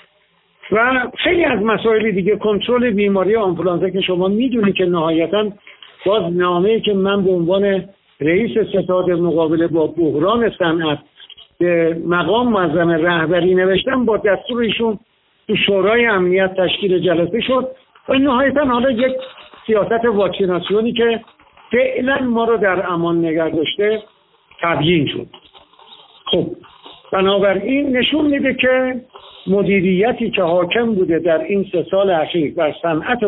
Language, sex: Persian, male